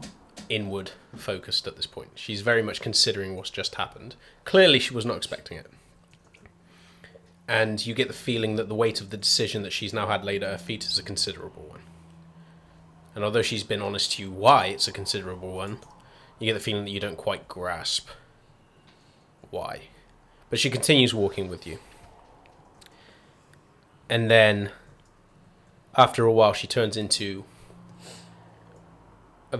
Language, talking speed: English, 160 wpm